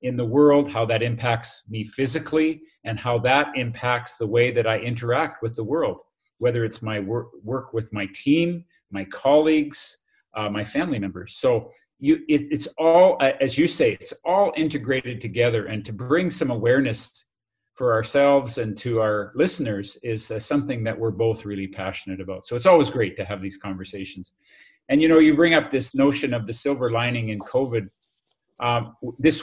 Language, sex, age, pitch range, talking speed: English, male, 40-59, 110-140 Hz, 185 wpm